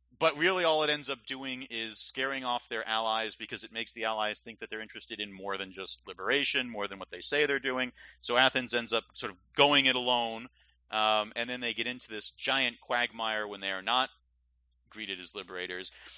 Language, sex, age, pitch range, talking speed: English, male, 40-59, 95-125 Hz, 215 wpm